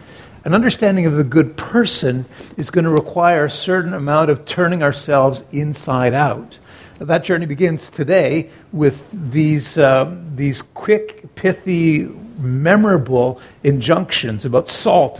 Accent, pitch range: American, 135-175 Hz